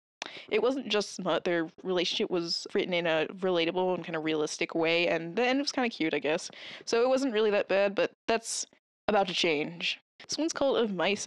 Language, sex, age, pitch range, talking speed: English, female, 20-39, 175-245 Hz, 220 wpm